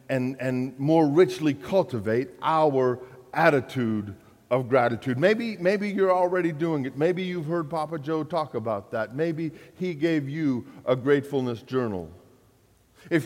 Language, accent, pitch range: English, American, 120-165 Hz